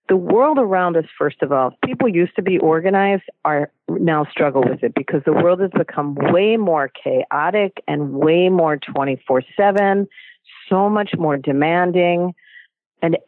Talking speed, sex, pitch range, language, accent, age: 160 wpm, female, 150-230 Hz, English, American, 50-69